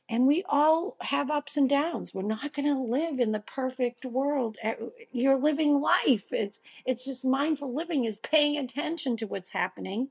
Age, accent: 50-69, American